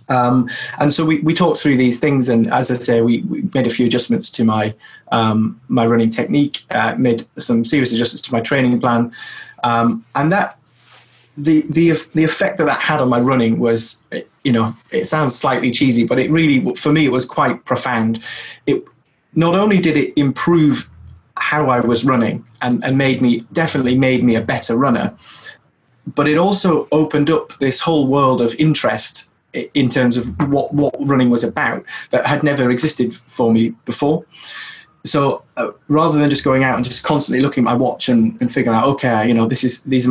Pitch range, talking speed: 120-150 Hz, 200 wpm